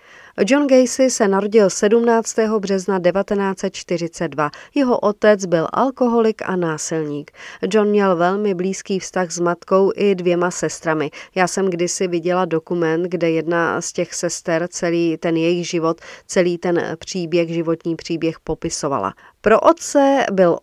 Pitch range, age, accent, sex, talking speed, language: 170-225 Hz, 40-59, native, female, 135 wpm, Czech